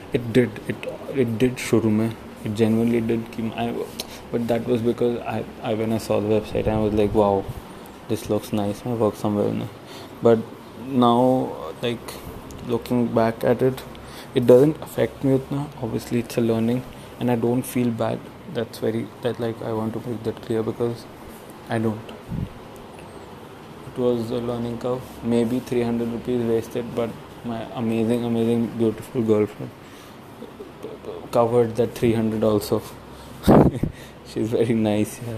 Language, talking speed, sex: English, 155 wpm, male